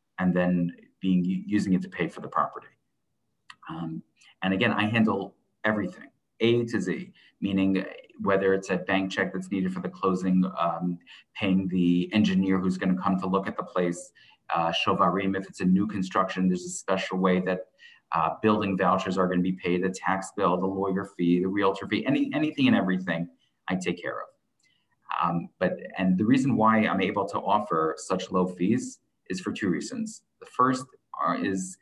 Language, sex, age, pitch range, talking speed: English, male, 30-49, 90-105 Hz, 185 wpm